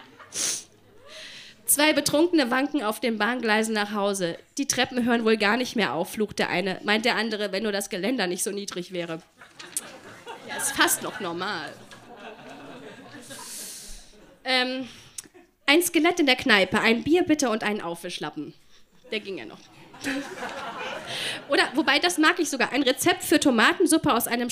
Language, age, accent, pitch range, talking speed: German, 30-49, German, 210-310 Hz, 155 wpm